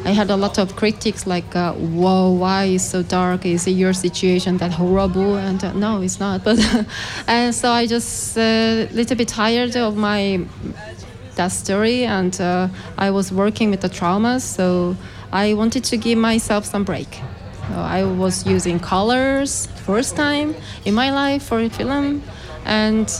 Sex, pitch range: female, 185-230 Hz